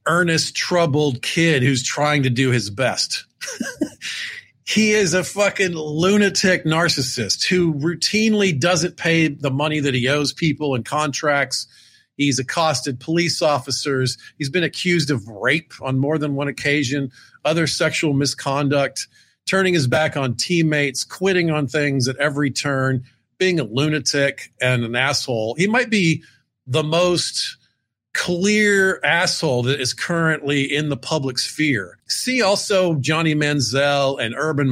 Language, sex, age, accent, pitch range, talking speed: English, male, 50-69, American, 140-190 Hz, 140 wpm